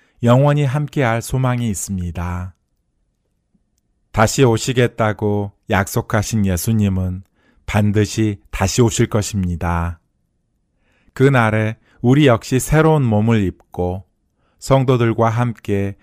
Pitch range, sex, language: 90-120 Hz, male, Korean